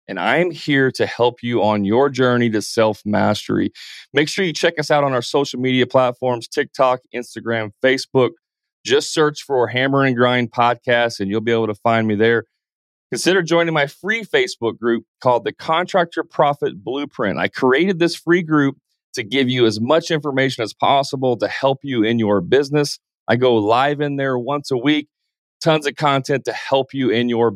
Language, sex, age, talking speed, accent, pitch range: English, male, 30-49, 190 wpm, American, 115-145 Hz